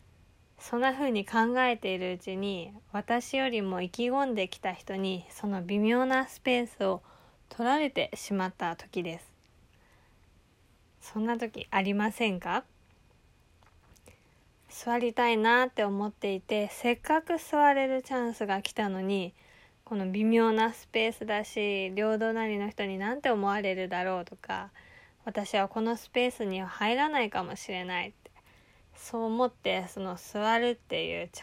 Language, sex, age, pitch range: Japanese, female, 20-39, 195-240 Hz